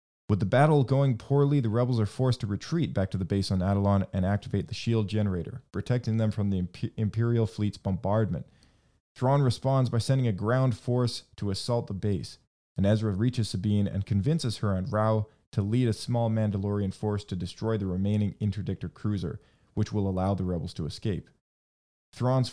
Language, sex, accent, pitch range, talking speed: English, male, American, 100-120 Hz, 185 wpm